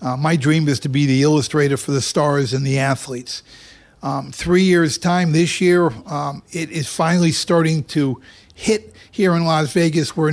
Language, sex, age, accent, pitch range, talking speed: English, male, 50-69, American, 145-180 Hz, 185 wpm